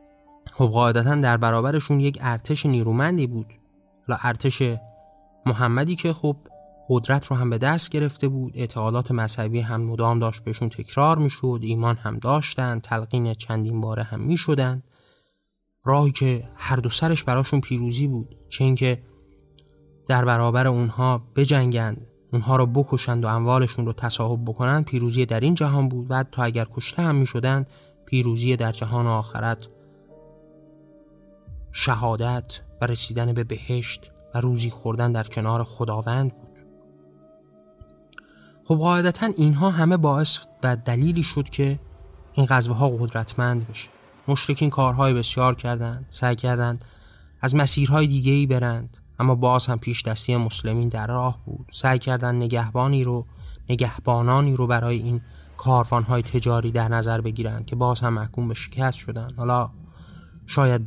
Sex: male